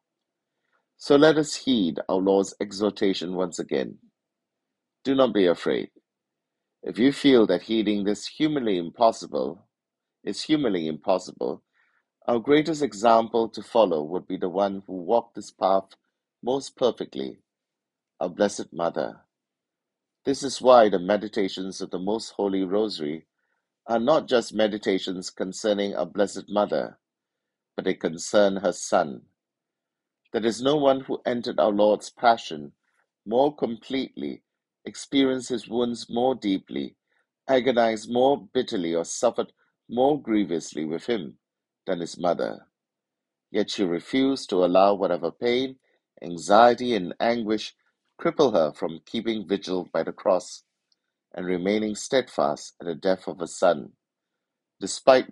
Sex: male